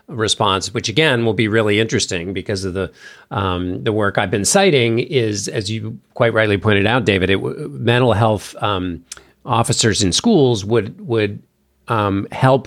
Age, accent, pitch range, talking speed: 40-59, American, 100-125 Hz, 165 wpm